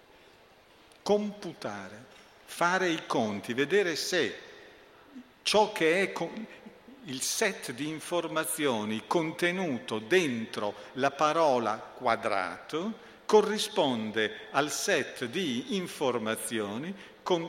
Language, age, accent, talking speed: Italian, 50-69, native, 80 wpm